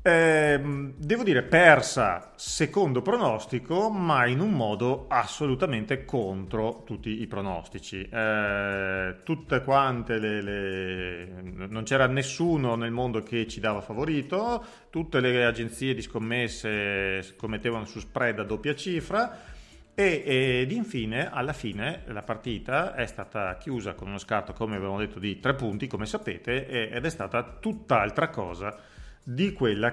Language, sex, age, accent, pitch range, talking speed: Italian, male, 30-49, native, 105-140 Hz, 135 wpm